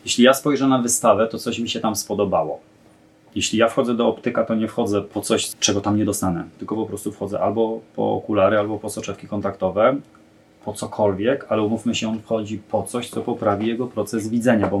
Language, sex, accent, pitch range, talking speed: Polish, male, native, 100-115 Hz, 205 wpm